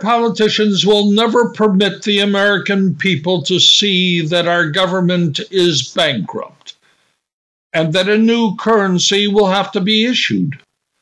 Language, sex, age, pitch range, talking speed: English, male, 60-79, 155-195 Hz, 130 wpm